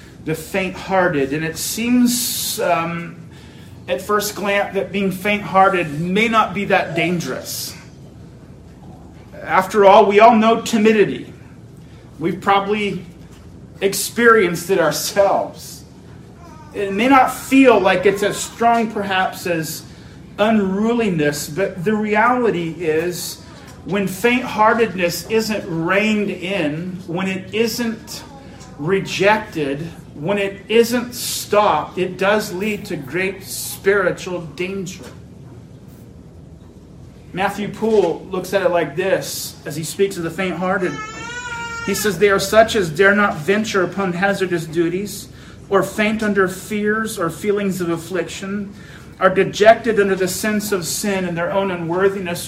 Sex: male